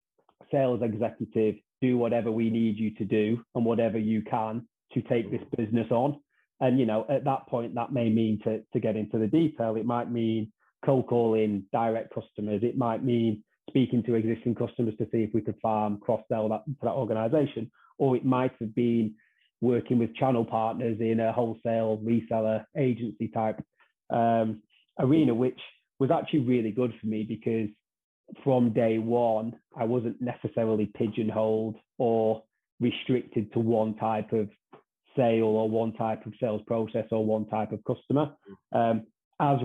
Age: 30-49